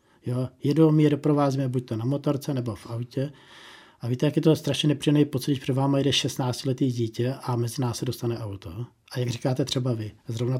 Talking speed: 205 wpm